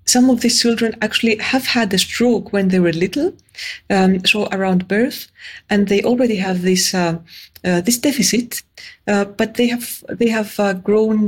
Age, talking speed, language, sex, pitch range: 30-49, 180 wpm, English, female, 180-225 Hz